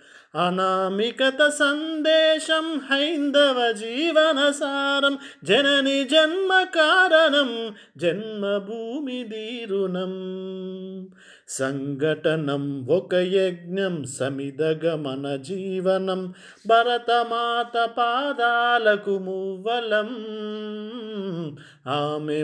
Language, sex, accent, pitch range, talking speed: Telugu, male, native, 190-250 Hz, 55 wpm